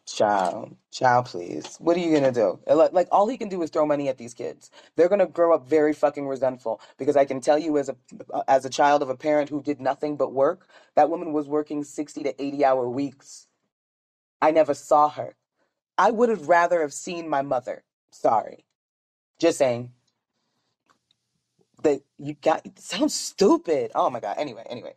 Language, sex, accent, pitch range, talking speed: English, female, American, 135-160 Hz, 190 wpm